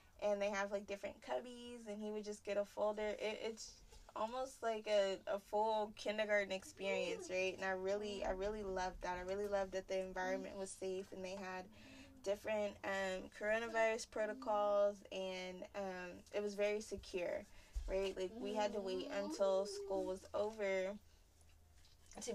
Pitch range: 190-215 Hz